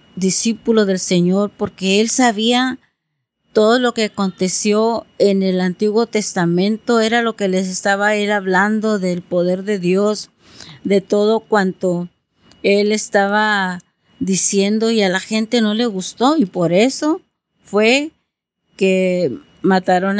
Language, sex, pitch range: Spanish, female, 190-240 Hz